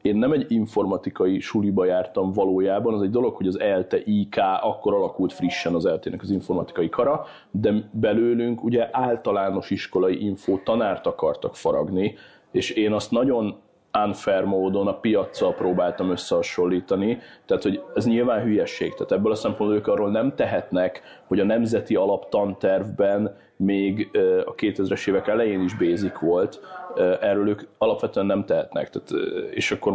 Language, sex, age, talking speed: Hungarian, male, 30-49, 150 wpm